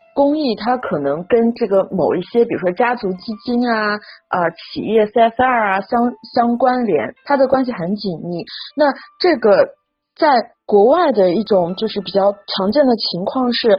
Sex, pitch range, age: female, 200-295 Hz, 30-49